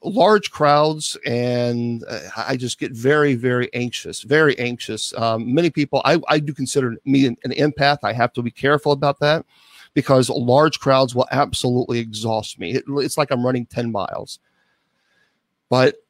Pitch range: 120-145 Hz